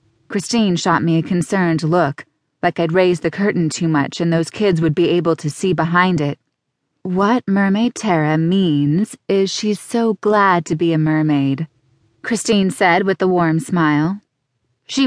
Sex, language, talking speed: female, English, 165 wpm